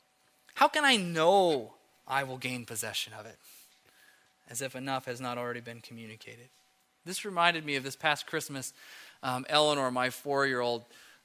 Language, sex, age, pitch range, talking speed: English, male, 20-39, 120-145 Hz, 155 wpm